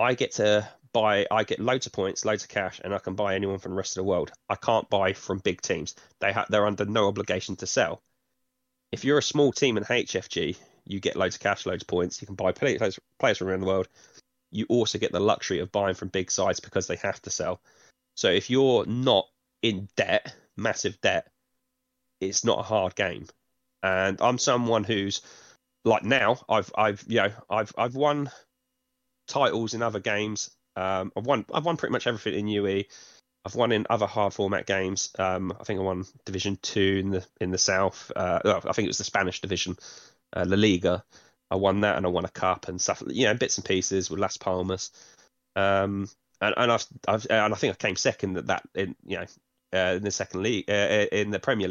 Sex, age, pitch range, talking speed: male, 20-39, 95-115 Hz, 220 wpm